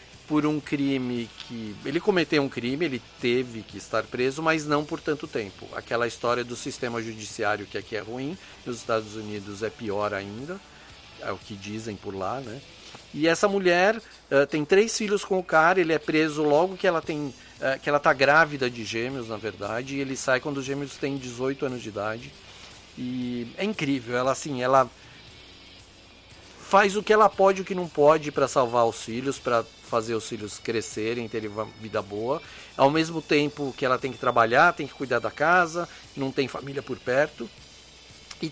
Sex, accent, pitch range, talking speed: male, Brazilian, 115-160 Hz, 195 wpm